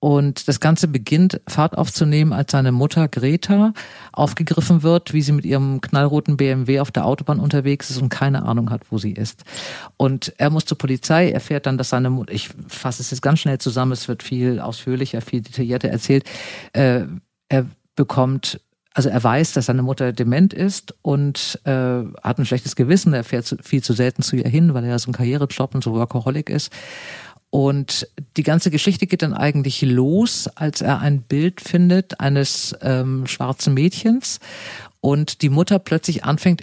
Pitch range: 125-155 Hz